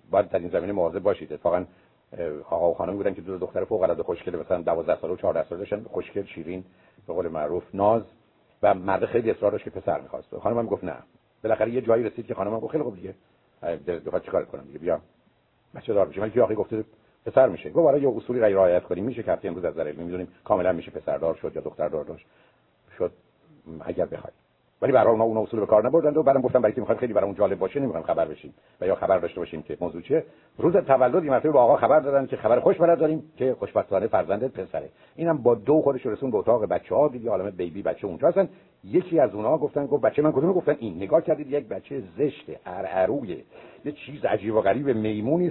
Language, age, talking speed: Persian, 60-79, 210 wpm